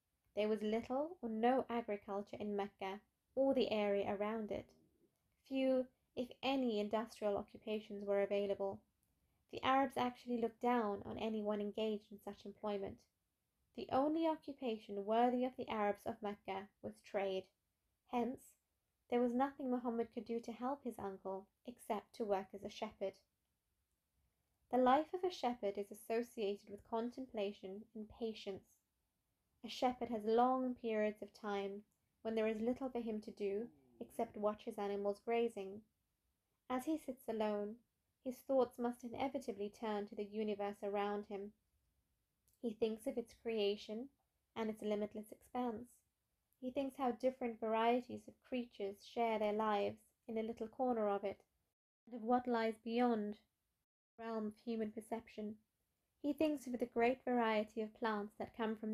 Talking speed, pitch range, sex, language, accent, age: 155 wpm, 205-245 Hz, female, English, British, 20-39